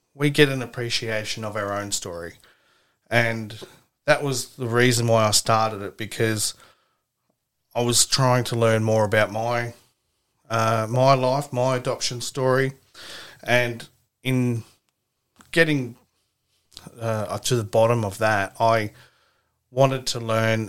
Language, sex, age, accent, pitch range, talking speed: English, male, 30-49, Australian, 110-125 Hz, 130 wpm